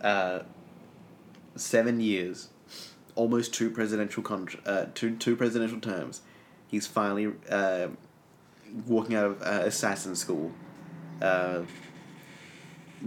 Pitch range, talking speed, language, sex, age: 100-115 Hz, 100 wpm, English, male, 30-49